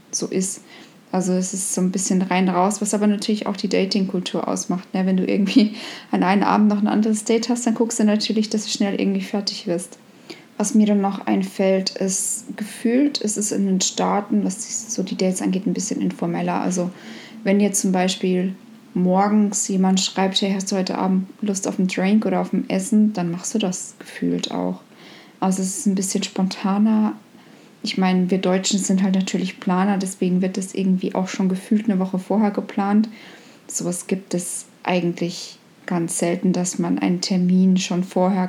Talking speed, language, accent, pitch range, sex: 195 wpm, German, German, 185-215 Hz, female